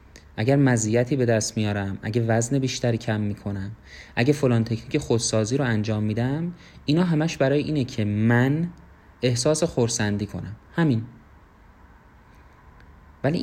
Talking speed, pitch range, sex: 125 wpm, 100-135 Hz, male